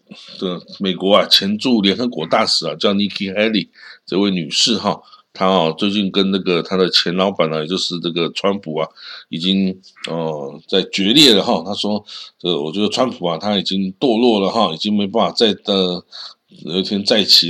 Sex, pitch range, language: male, 90-110 Hz, Chinese